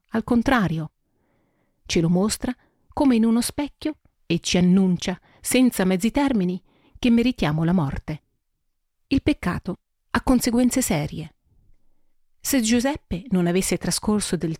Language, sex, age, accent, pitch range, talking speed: Italian, female, 40-59, native, 170-225 Hz, 125 wpm